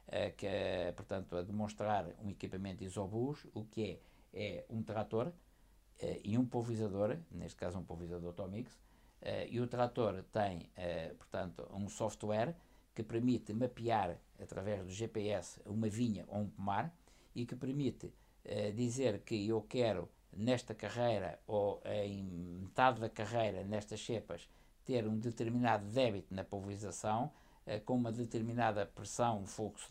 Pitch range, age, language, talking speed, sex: 105-120 Hz, 60-79, Portuguese, 135 wpm, male